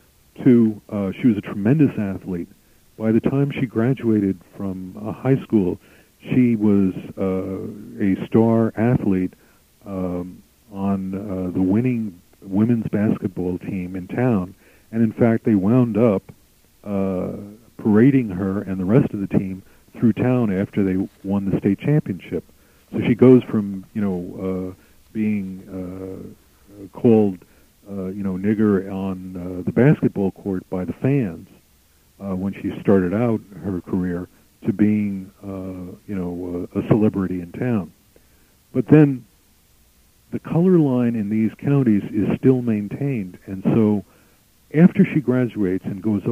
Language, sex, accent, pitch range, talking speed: English, male, American, 95-115 Hz, 145 wpm